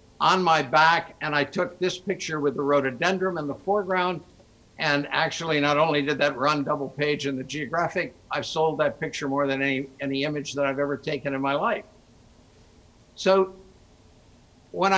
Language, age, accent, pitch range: English, 60-79, American, 145-185 Hz